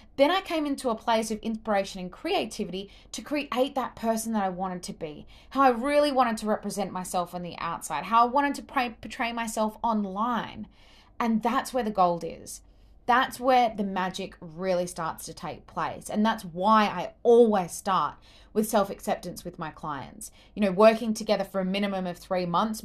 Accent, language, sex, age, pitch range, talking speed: Australian, English, female, 20-39, 190-245 Hz, 190 wpm